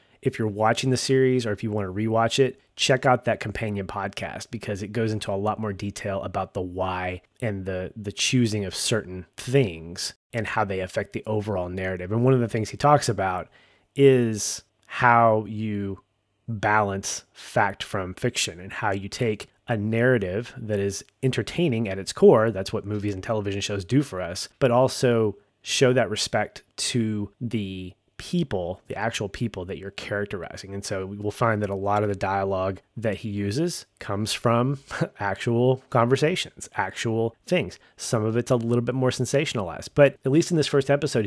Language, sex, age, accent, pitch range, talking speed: English, male, 30-49, American, 100-125 Hz, 185 wpm